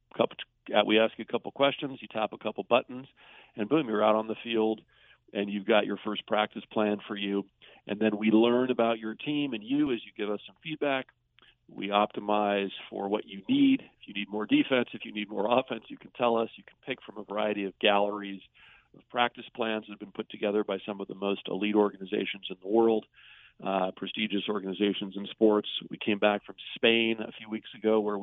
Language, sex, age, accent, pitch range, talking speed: English, male, 50-69, American, 100-115 Hz, 220 wpm